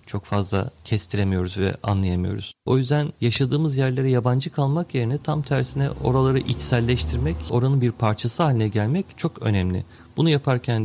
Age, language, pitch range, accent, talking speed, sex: 40-59, Turkish, 105-135 Hz, native, 140 wpm, male